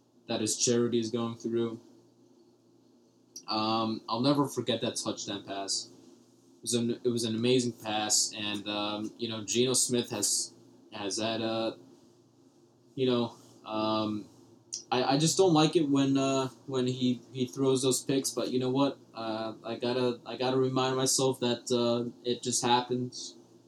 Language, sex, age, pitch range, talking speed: English, male, 20-39, 115-135 Hz, 160 wpm